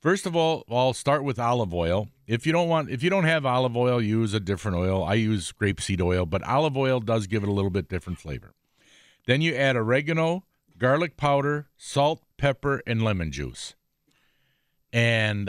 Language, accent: English, American